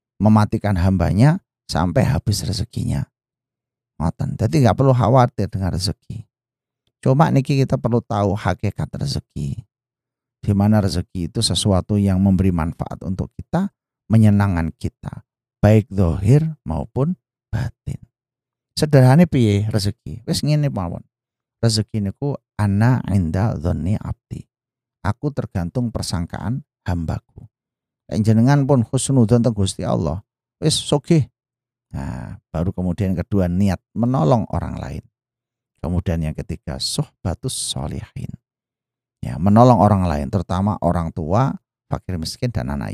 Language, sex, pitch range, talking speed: Indonesian, male, 95-130 Hz, 110 wpm